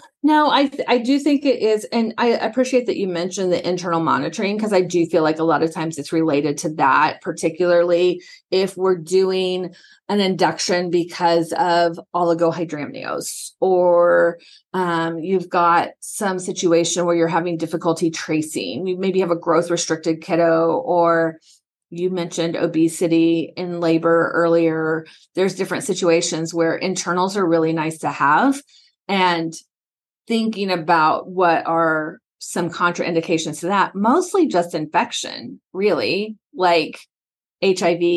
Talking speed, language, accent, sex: 140 wpm, English, American, female